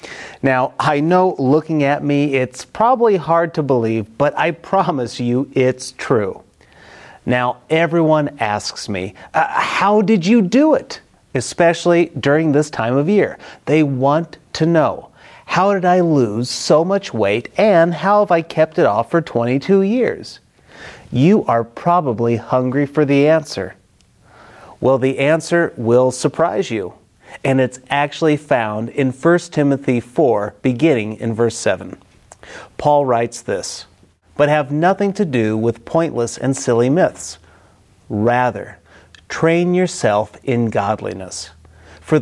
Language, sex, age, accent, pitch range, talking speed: English, male, 30-49, American, 115-160 Hz, 140 wpm